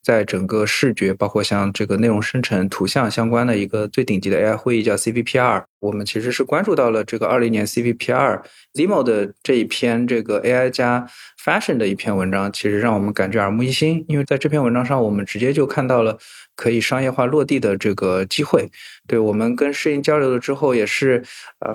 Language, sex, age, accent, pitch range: Chinese, male, 20-39, native, 110-125 Hz